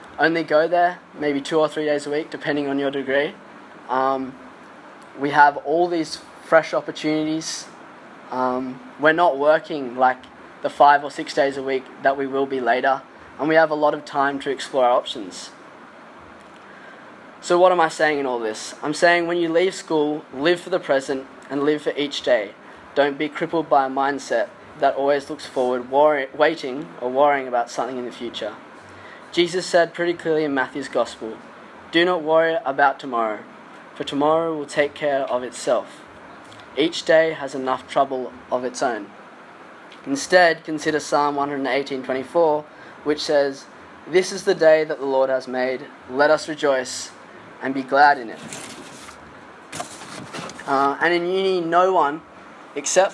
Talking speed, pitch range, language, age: 165 wpm, 135-160 Hz, English, 20-39